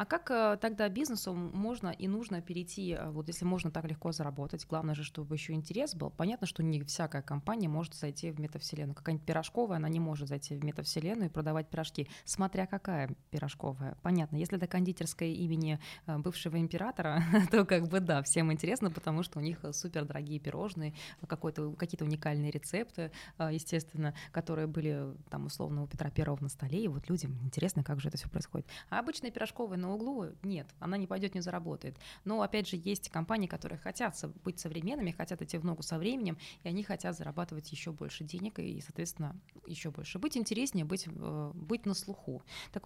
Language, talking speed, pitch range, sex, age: Russian, 180 wpm, 155-190 Hz, female, 20-39